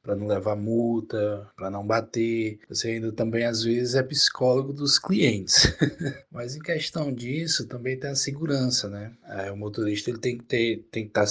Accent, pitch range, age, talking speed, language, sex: Brazilian, 115-145 Hz, 20-39, 165 wpm, Portuguese, male